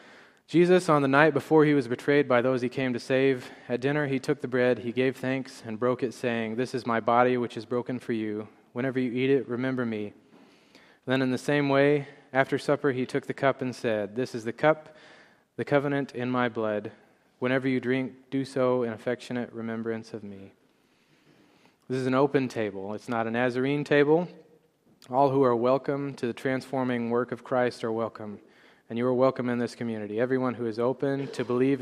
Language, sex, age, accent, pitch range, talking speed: English, male, 20-39, American, 120-135 Hz, 205 wpm